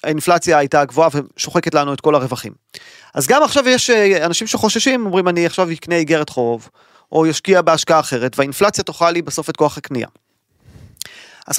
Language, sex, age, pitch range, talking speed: Hebrew, male, 30-49, 145-200 Hz, 165 wpm